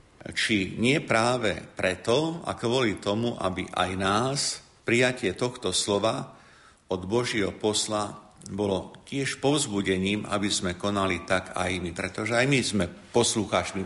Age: 50-69